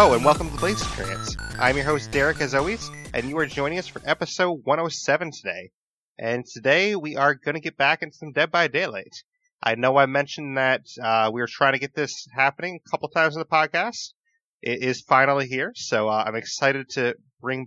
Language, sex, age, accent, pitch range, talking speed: English, male, 30-49, American, 125-155 Hz, 215 wpm